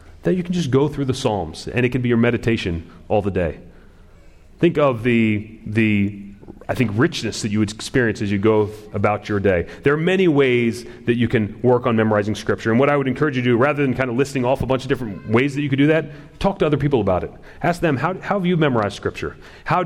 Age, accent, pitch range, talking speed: 30-49, American, 110-140 Hz, 255 wpm